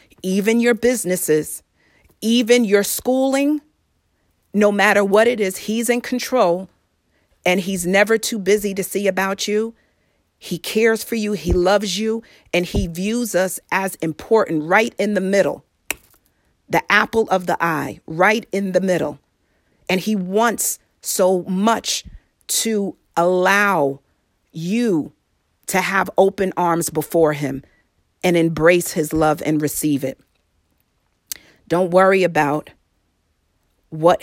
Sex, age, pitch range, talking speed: female, 40-59, 150-195 Hz, 130 wpm